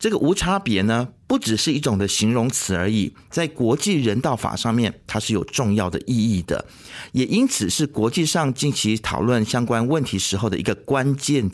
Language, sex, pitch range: Chinese, male, 105-150 Hz